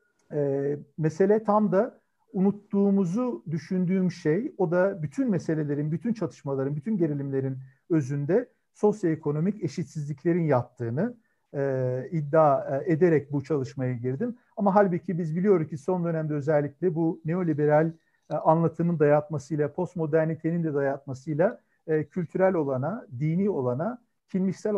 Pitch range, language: 150-195 Hz, Turkish